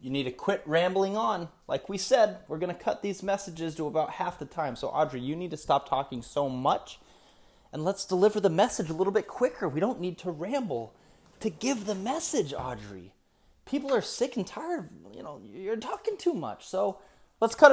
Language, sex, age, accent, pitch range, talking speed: English, male, 20-39, American, 160-220 Hz, 210 wpm